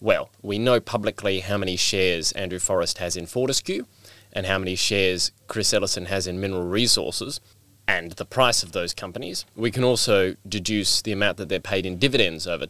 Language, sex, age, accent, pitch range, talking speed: English, male, 20-39, Australian, 95-115 Hz, 190 wpm